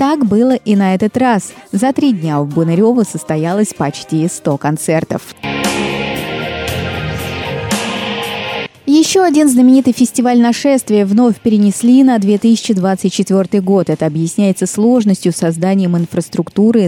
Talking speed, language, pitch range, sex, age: 110 wpm, Russian, 165-230 Hz, female, 20-39